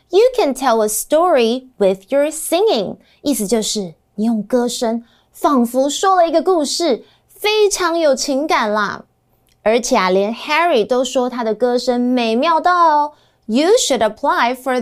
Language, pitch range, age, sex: Chinese, 210-310 Hz, 20-39, female